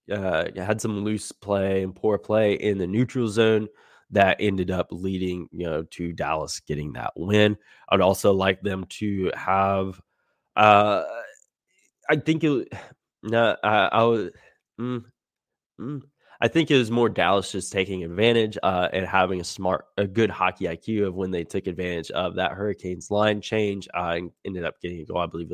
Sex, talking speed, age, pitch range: male, 180 wpm, 20-39, 95-115 Hz